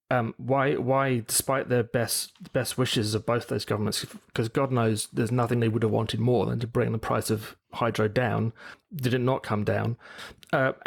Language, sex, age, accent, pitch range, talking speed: English, male, 30-49, British, 105-125 Hz, 200 wpm